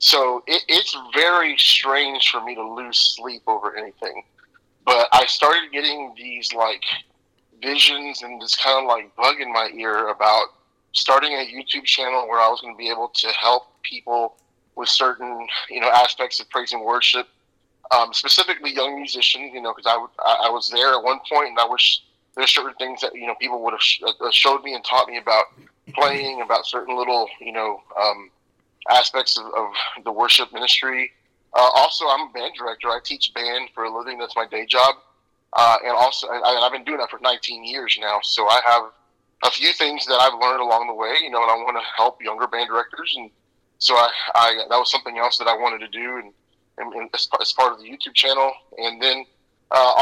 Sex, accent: male, American